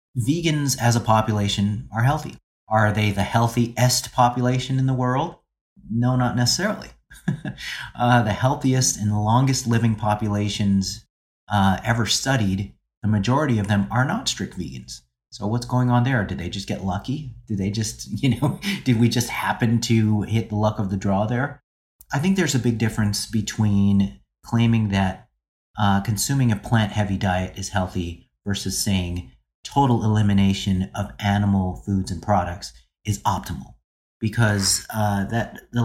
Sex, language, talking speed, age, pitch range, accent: male, English, 155 wpm, 30-49, 100-120 Hz, American